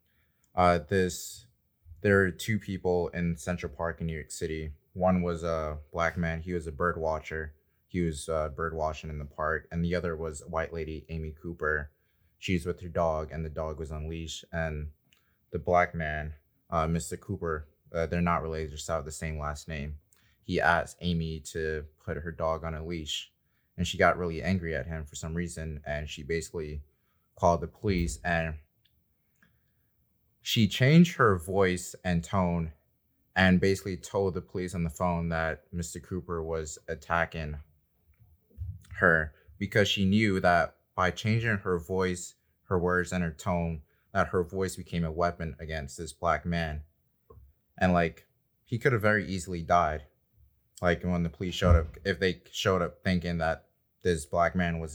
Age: 20-39